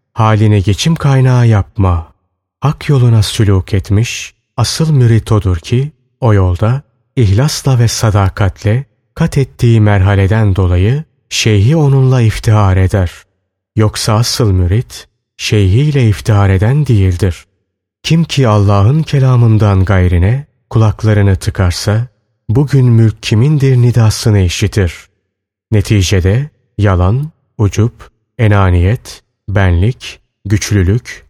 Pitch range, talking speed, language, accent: 100-125 Hz, 95 wpm, Turkish, native